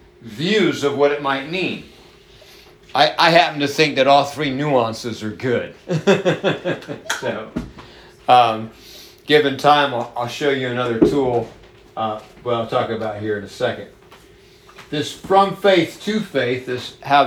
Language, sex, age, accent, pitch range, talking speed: English, male, 50-69, American, 125-160 Hz, 150 wpm